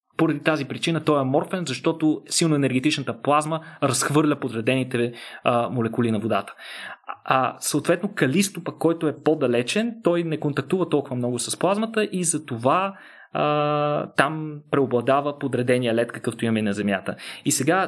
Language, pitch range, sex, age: Bulgarian, 120-155 Hz, male, 20-39